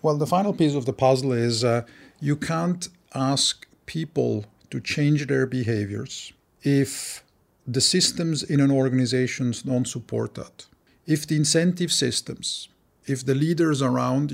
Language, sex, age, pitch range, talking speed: English, male, 50-69, 130-155 Hz, 140 wpm